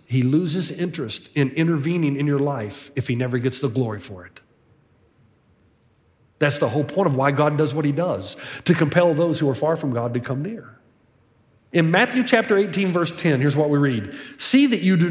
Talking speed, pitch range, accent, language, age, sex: 205 wpm, 145-230 Hz, American, English, 40-59, male